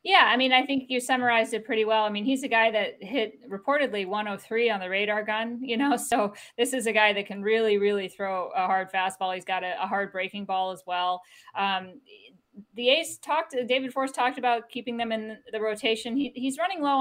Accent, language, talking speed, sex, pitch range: American, English, 230 wpm, female, 185-230 Hz